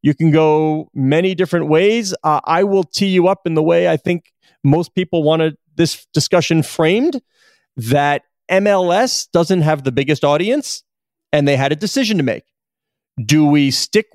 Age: 40-59